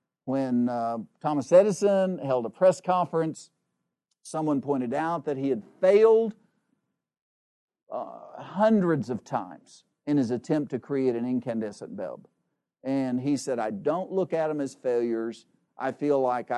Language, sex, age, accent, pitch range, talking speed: English, male, 50-69, American, 130-185 Hz, 145 wpm